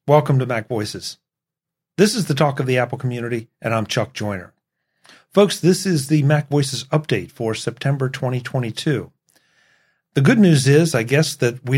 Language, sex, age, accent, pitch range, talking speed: English, male, 50-69, American, 110-145 Hz, 175 wpm